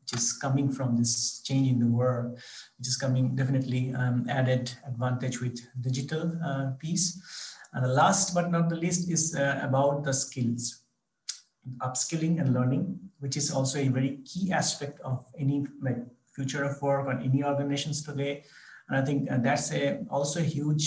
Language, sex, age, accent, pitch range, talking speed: English, male, 50-69, Indian, 125-140 Hz, 175 wpm